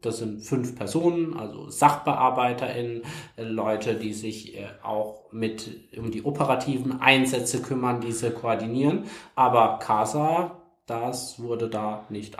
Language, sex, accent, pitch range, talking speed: German, male, German, 115-145 Hz, 115 wpm